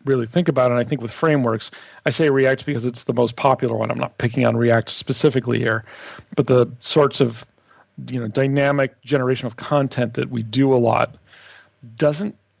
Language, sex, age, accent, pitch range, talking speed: English, male, 40-59, American, 125-145 Hz, 190 wpm